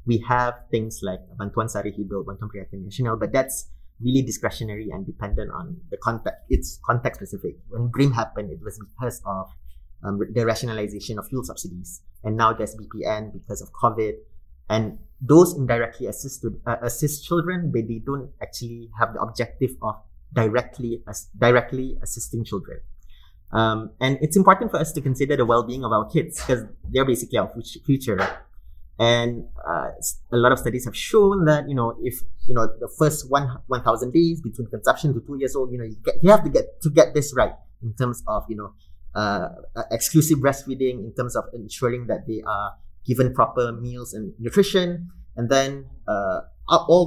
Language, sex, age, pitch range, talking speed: English, male, 30-49, 110-135 Hz, 180 wpm